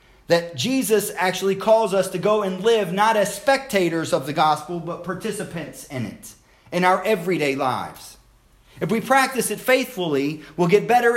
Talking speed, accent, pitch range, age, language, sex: 165 wpm, American, 160-210 Hz, 40-59, English, male